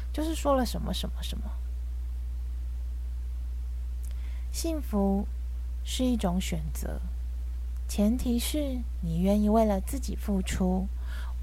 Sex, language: female, Chinese